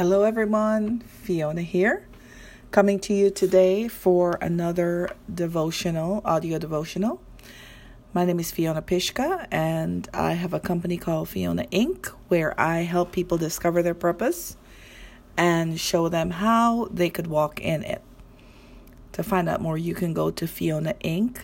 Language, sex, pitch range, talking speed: English, female, 160-200 Hz, 145 wpm